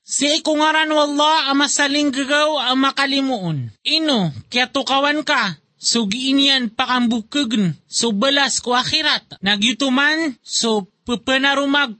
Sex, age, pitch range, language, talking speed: male, 20-39, 220-285 Hz, Filipino, 100 wpm